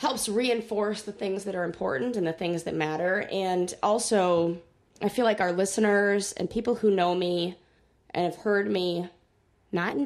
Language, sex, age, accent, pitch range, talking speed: English, female, 20-39, American, 170-225 Hz, 180 wpm